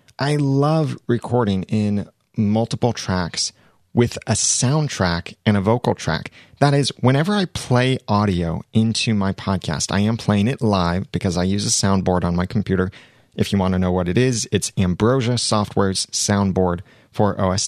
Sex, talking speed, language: male, 165 wpm, English